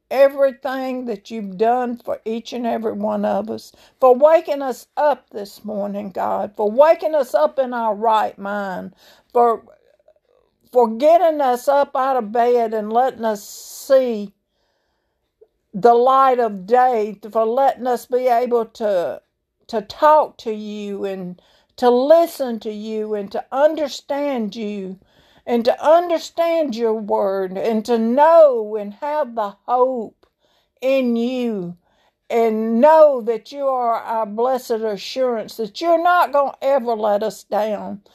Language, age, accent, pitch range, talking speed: English, 60-79, American, 210-260 Hz, 145 wpm